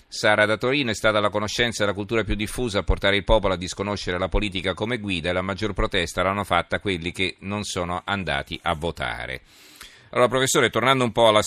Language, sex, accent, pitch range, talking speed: Italian, male, native, 90-105 Hz, 215 wpm